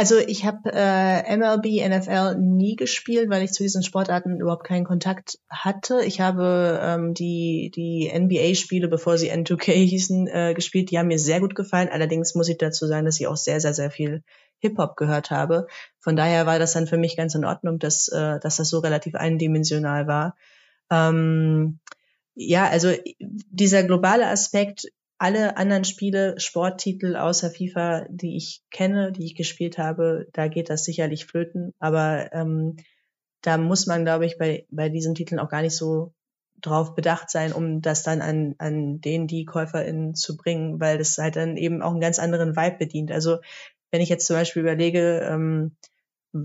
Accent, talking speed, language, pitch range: German, 180 wpm, German, 160-185 Hz